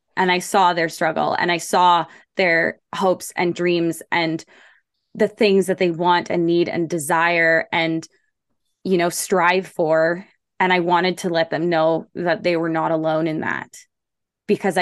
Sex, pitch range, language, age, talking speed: female, 170-200 Hz, English, 20-39, 170 wpm